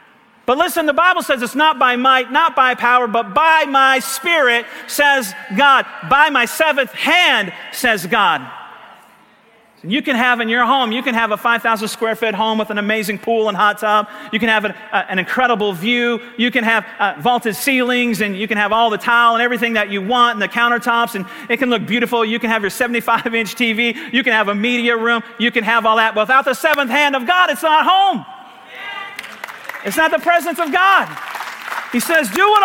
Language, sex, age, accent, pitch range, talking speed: English, male, 50-69, American, 225-285 Hz, 210 wpm